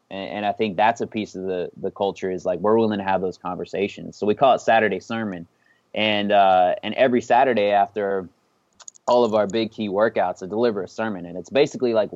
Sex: male